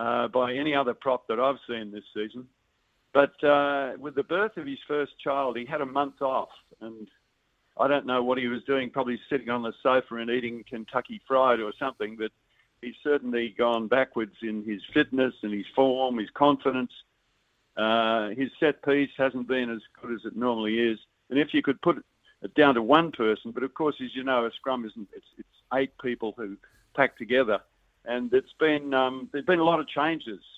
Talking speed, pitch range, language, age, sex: 200 wpm, 115-140 Hz, English, 50-69, male